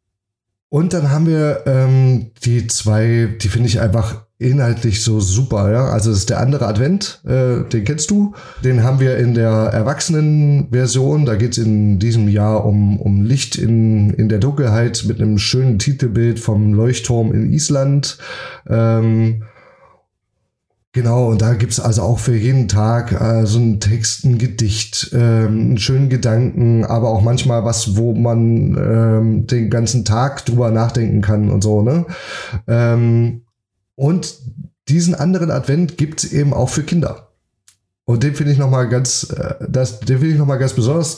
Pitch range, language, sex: 110-130 Hz, German, male